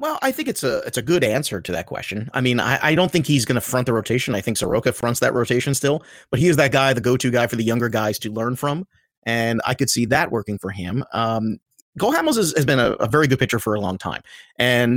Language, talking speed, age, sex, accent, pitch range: English, 280 wpm, 30-49, male, American, 120-150 Hz